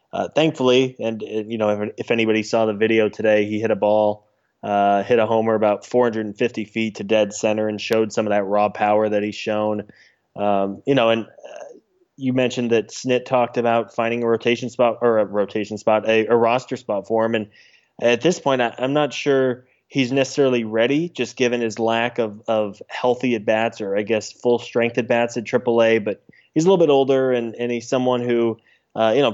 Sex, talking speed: male, 215 wpm